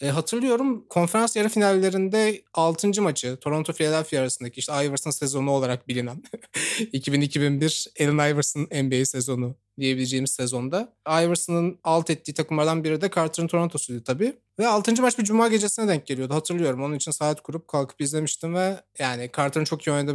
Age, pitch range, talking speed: 30-49, 135-170 Hz, 150 wpm